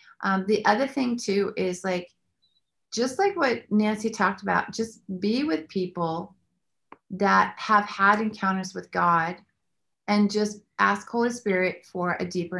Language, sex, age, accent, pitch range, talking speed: English, female, 40-59, American, 185-215 Hz, 150 wpm